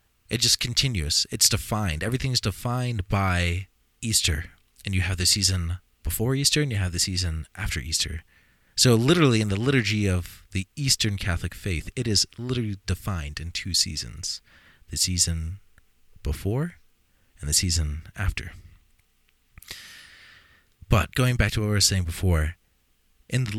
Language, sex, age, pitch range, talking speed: English, male, 30-49, 85-115 Hz, 150 wpm